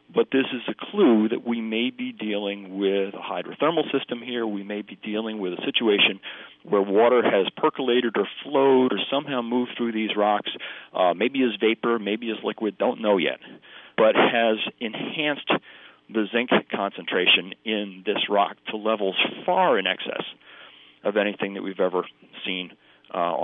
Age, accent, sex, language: 40-59, American, male, English